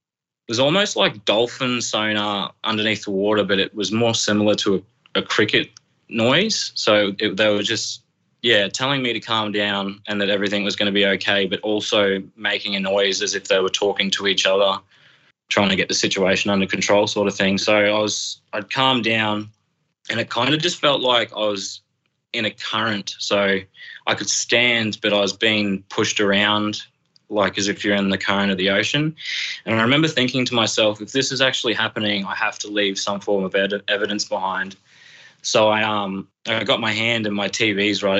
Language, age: English, 20-39